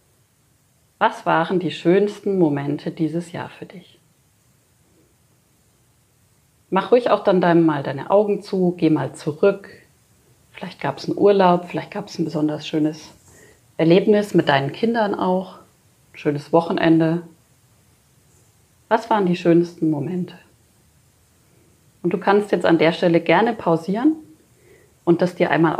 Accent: German